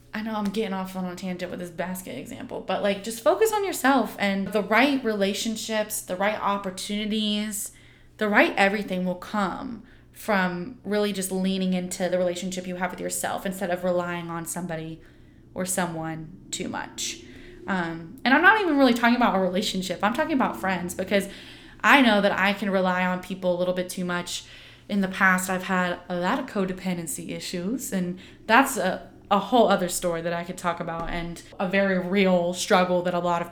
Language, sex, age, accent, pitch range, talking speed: English, female, 20-39, American, 180-215 Hz, 195 wpm